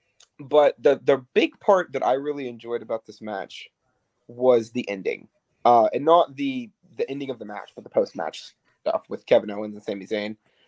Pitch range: 115-155 Hz